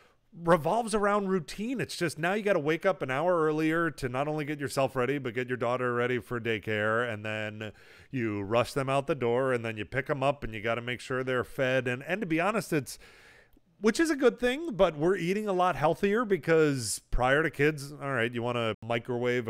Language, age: English, 30-49